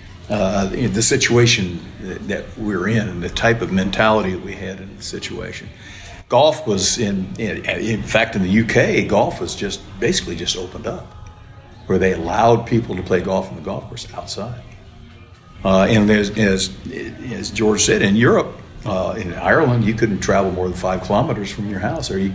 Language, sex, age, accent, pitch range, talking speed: English, male, 60-79, American, 95-115 Hz, 185 wpm